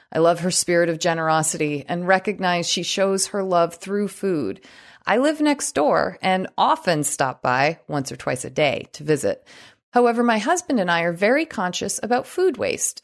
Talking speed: 185 wpm